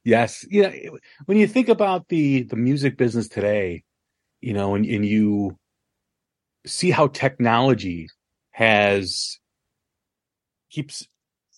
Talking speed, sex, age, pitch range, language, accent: 110 wpm, male, 30-49, 110-140 Hz, English, American